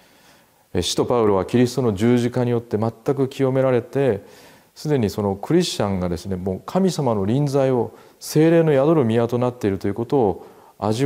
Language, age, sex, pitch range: Japanese, 40-59, male, 95-150 Hz